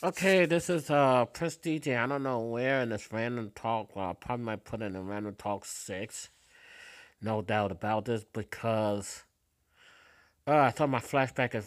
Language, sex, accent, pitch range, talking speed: English, male, American, 105-145 Hz, 175 wpm